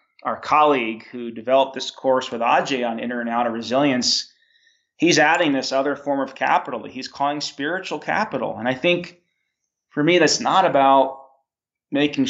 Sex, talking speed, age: male, 165 wpm, 30-49